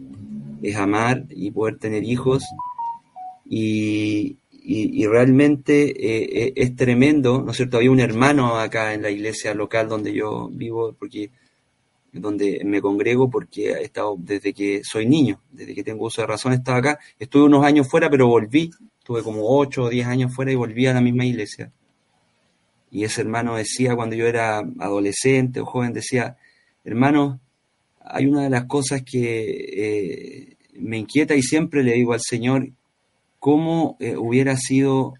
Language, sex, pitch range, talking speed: Spanish, male, 110-135 Hz, 165 wpm